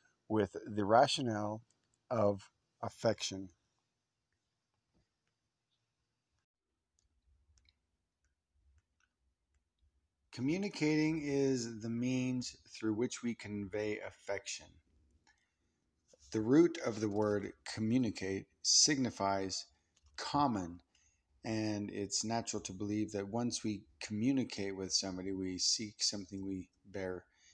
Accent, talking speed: American, 85 wpm